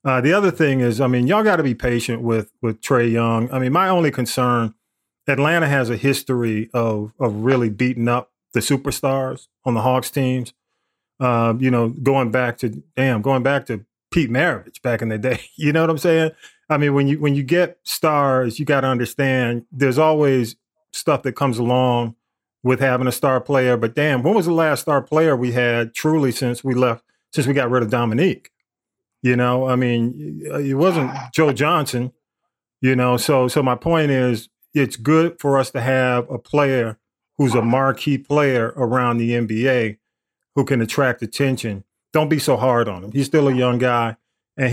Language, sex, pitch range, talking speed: English, male, 125-155 Hz, 195 wpm